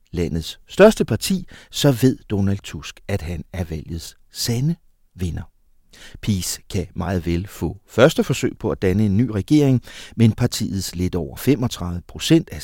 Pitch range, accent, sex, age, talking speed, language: 85-115 Hz, native, male, 60-79, 155 wpm, Danish